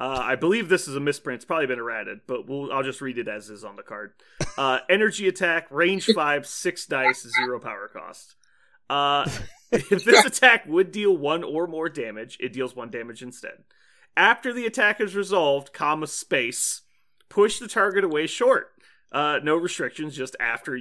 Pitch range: 135-190 Hz